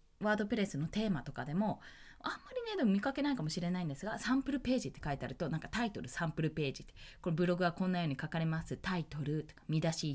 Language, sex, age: Japanese, female, 20-39